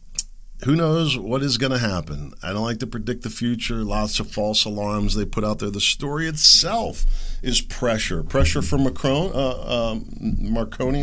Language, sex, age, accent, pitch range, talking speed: English, male, 50-69, American, 80-125 Hz, 180 wpm